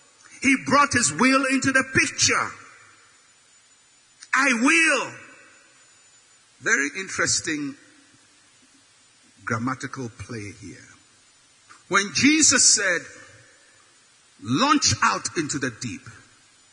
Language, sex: English, male